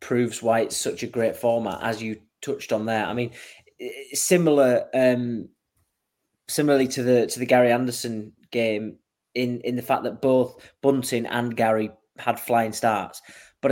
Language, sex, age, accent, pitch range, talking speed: English, male, 20-39, British, 115-130 Hz, 160 wpm